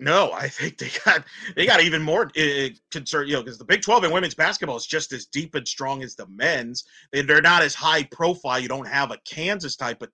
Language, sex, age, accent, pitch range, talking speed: English, male, 30-49, American, 140-180 Hz, 245 wpm